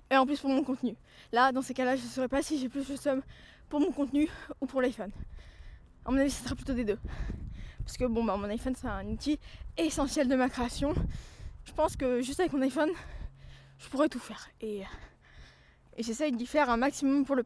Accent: French